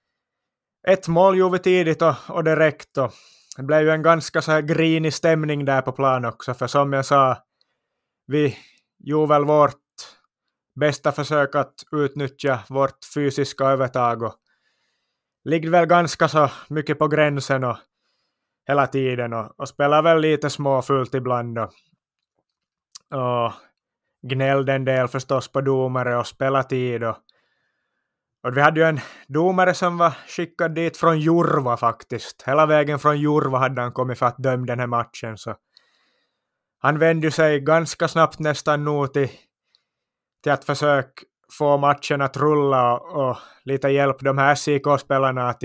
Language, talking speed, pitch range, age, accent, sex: Swedish, 155 wpm, 130-155 Hz, 20-39, Finnish, male